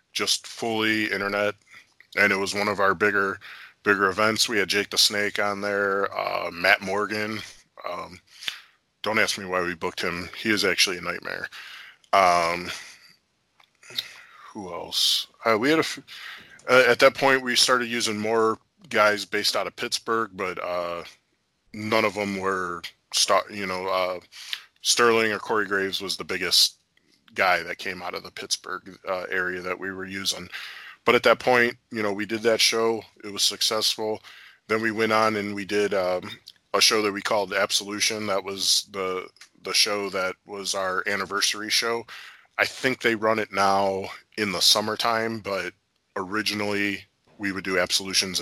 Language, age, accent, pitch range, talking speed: English, 20-39, American, 95-110 Hz, 170 wpm